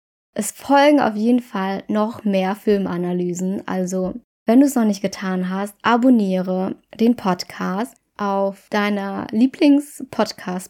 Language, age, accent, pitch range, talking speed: German, 20-39, German, 195-240 Hz, 125 wpm